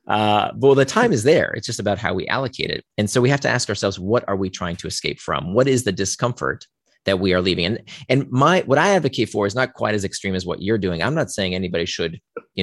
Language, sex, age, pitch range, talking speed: English, male, 30-49, 95-140 Hz, 275 wpm